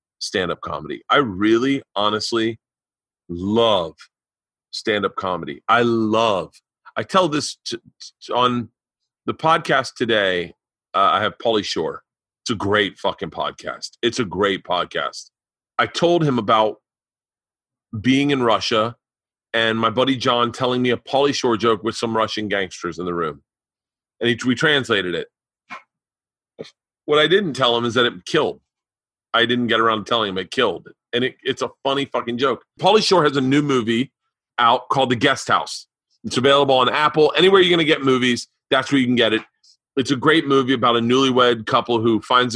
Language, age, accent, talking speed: English, 40-59, American, 175 wpm